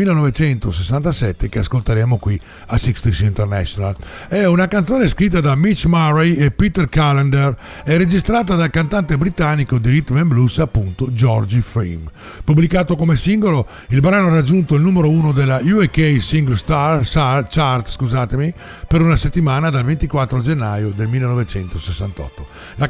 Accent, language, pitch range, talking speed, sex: native, Italian, 120-165 Hz, 140 wpm, male